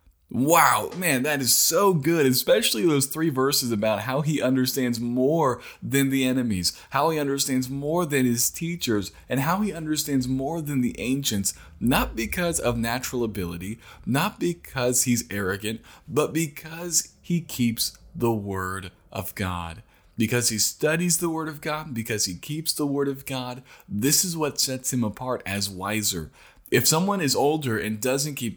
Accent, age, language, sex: American, 20-39, English, male